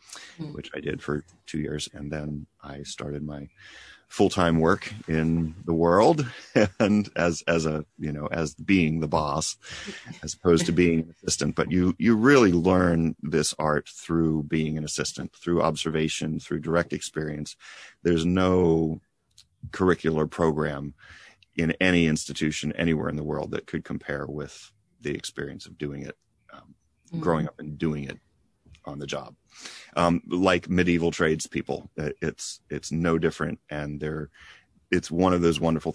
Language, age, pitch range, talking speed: English, 40-59, 75-85 Hz, 155 wpm